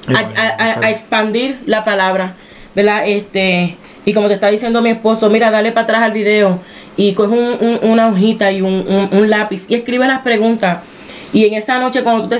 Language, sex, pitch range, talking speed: Spanish, female, 205-235 Hz, 215 wpm